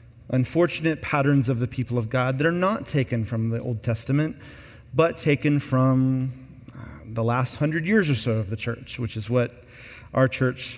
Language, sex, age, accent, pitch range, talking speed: English, male, 30-49, American, 120-150 Hz, 180 wpm